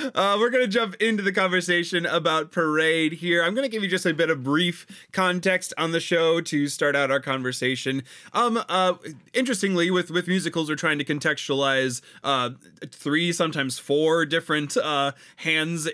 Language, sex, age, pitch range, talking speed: English, male, 20-39, 130-175 Hz, 170 wpm